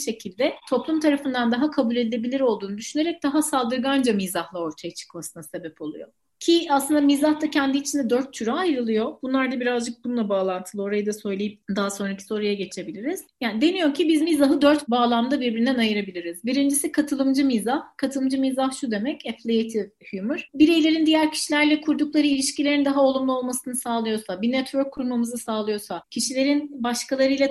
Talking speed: 150 wpm